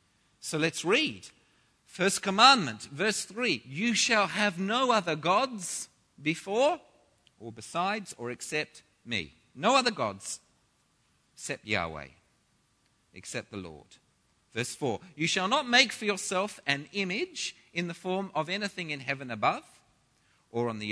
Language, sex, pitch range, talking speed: English, male, 125-200 Hz, 140 wpm